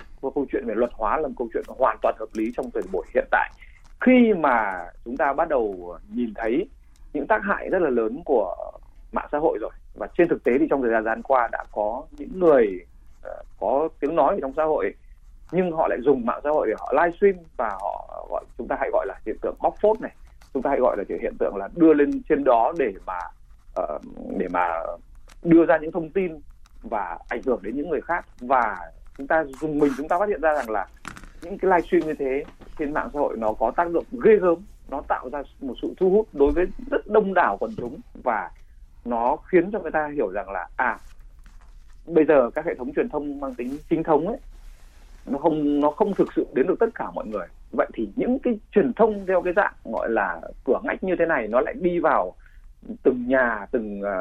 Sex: male